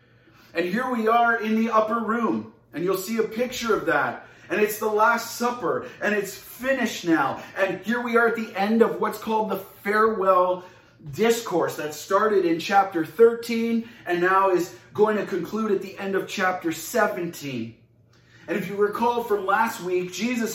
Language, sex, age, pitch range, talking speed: English, male, 30-49, 170-230 Hz, 180 wpm